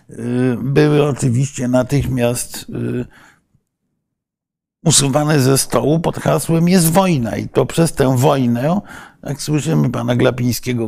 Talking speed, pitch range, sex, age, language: 105 wpm, 115-145 Hz, male, 50-69, Polish